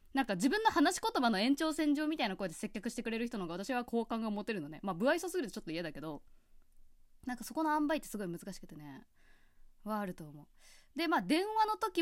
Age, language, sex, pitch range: 20-39, Japanese, female, 180-290 Hz